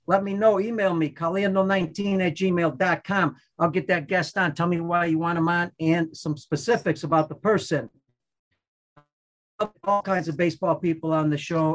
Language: English